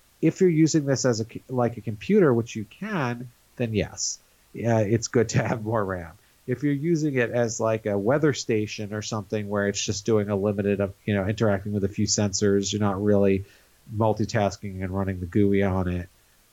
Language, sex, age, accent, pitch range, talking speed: English, male, 40-59, American, 100-125 Hz, 205 wpm